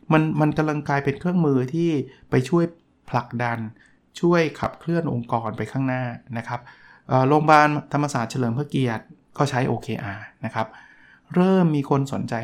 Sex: male